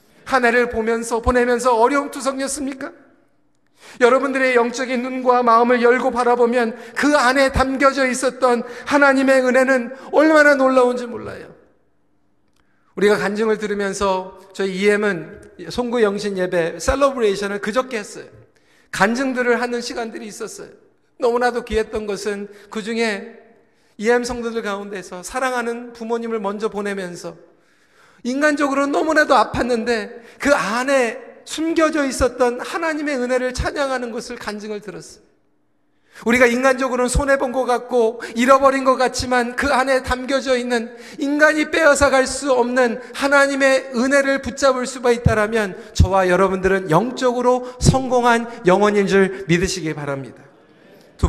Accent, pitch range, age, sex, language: native, 220-265 Hz, 40-59, male, Korean